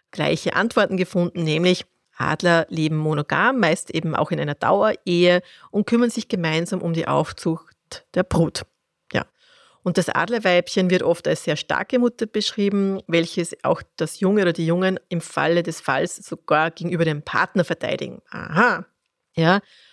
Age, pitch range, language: 30-49, 165-195 Hz, German